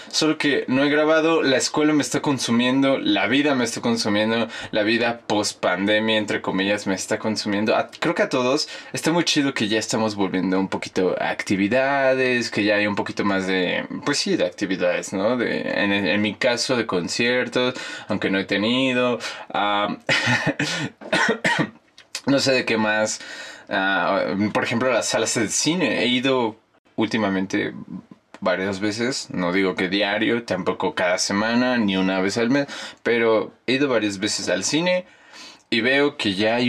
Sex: male